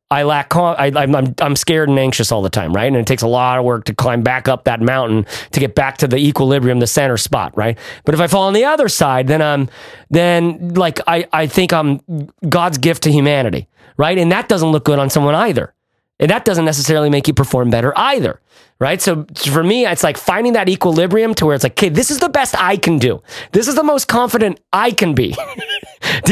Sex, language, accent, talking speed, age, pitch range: male, English, American, 235 wpm, 30-49, 140-195 Hz